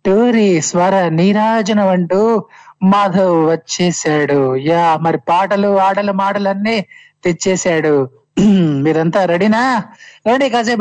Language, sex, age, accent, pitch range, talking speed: Telugu, male, 20-39, native, 165-205 Hz, 85 wpm